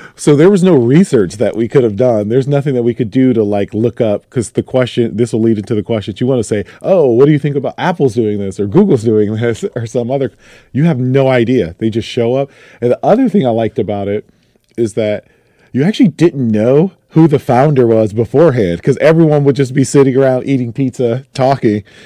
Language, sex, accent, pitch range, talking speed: English, male, American, 115-155 Hz, 235 wpm